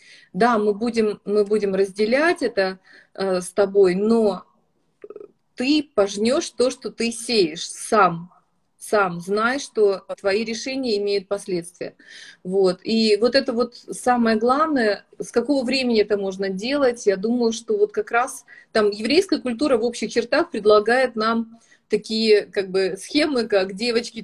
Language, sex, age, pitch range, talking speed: Russian, female, 30-49, 195-245 Hz, 145 wpm